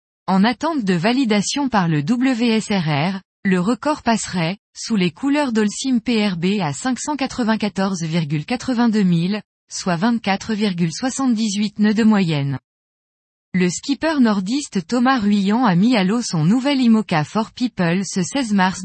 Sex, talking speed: female, 125 wpm